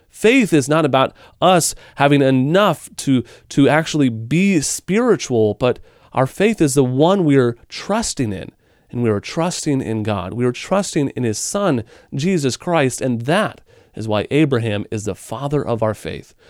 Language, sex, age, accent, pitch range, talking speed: English, male, 30-49, American, 115-160 Hz, 170 wpm